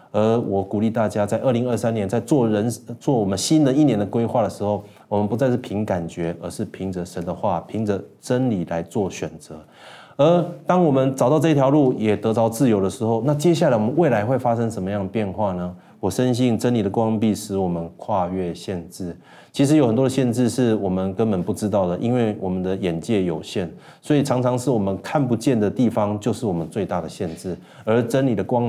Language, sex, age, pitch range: Chinese, male, 30-49, 100-130 Hz